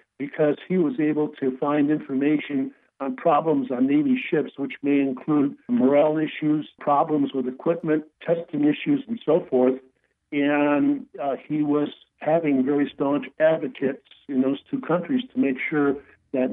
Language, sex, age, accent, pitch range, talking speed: English, male, 60-79, American, 135-165 Hz, 150 wpm